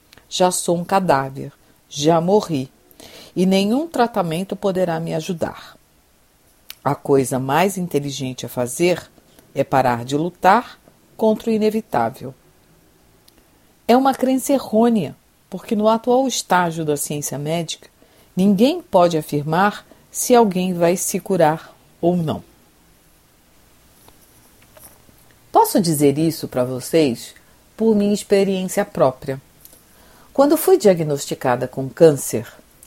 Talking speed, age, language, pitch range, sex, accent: 110 wpm, 50-69, Portuguese, 130-200 Hz, female, Brazilian